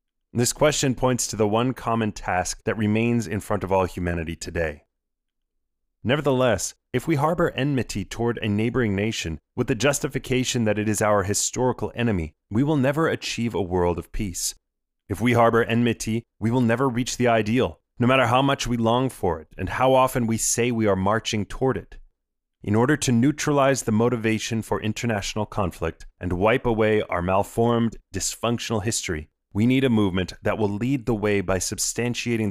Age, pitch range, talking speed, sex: 30-49, 95-125 Hz, 180 wpm, male